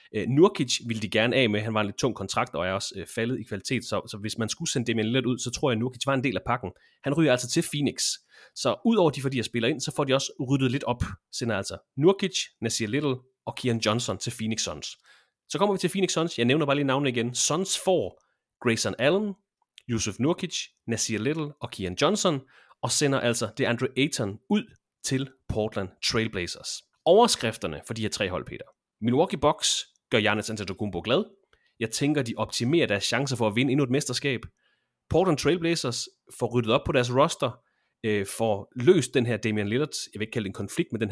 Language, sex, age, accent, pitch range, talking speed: Danish, male, 30-49, native, 110-150 Hz, 220 wpm